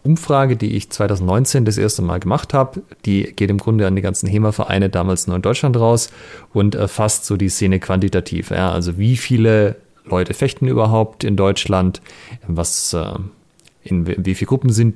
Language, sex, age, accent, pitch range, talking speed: German, male, 30-49, German, 90-115 Hz, 175 wpm